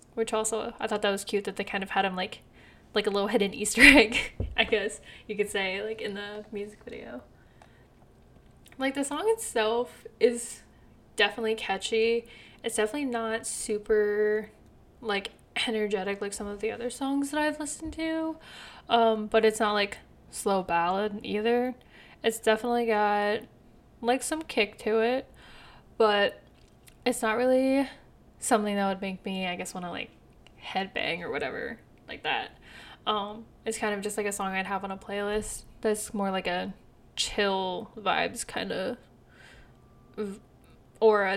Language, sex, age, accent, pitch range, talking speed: English, female, 10-29, American, 205-240 Hz, 160 wpm